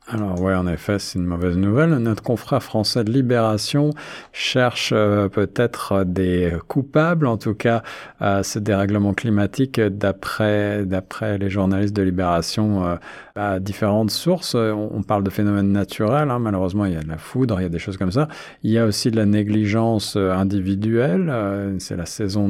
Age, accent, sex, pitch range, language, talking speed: 50-69, French, male, 95-115 Hz, French, 180 wpm